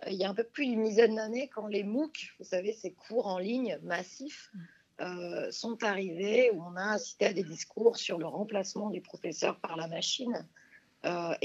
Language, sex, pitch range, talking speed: French, female, 190-230 Hz, 200 wpm